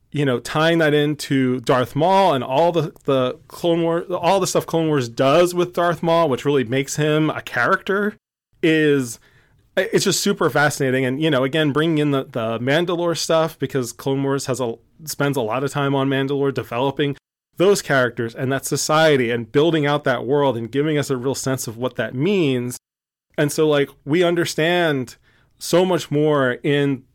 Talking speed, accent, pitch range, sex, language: 190 wpm, American, 125-150 Hz, male, English